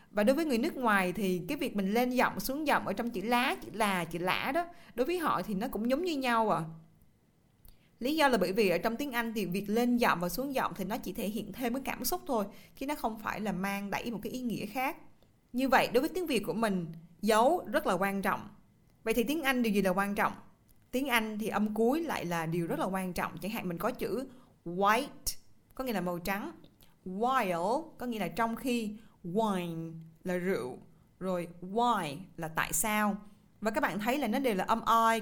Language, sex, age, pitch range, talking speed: Vietnamese, female, 20-39, 185-240 Hz, 240 wpm